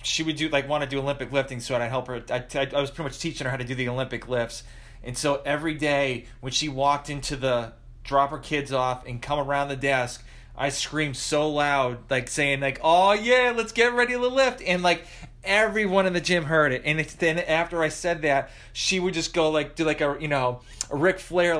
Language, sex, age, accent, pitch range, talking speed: English, male, 30-49, American, 130-155 Hz, 240 wpm